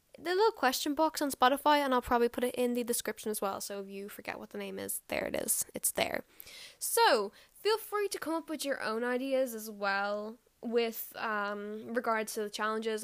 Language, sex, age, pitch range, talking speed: English, female, 10-29, 220-270 Hz, 215 wpm